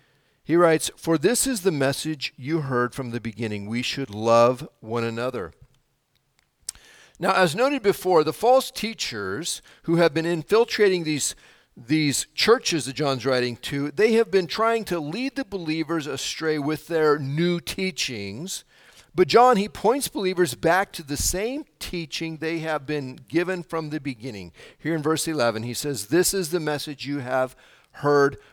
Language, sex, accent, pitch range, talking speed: English, male, American, 140-180 Hz, 165 wpm